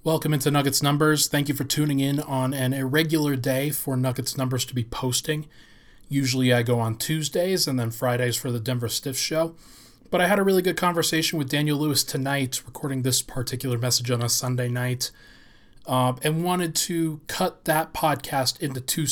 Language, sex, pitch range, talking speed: English, male, 130-155 Hz, 190 wpm